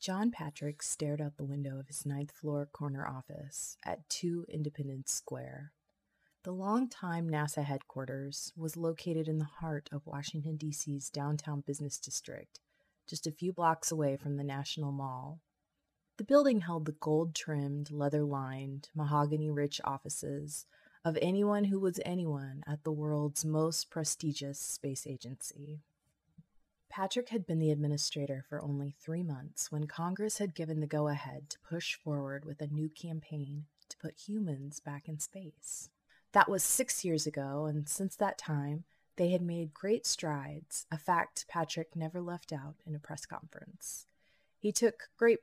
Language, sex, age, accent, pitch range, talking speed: English, female, 20-39, American, 145-165 Hz, 150 wpm